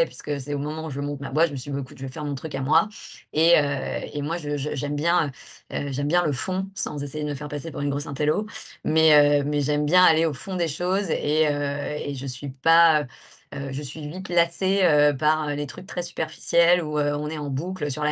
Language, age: French, 20-39